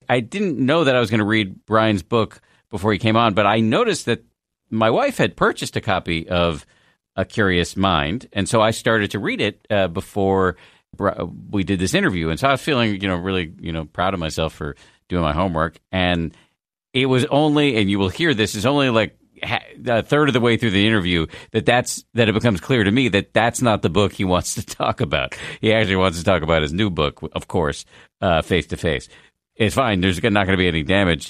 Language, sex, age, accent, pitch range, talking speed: English, male, 50-69, American, 85-110 Hz, 230 wpm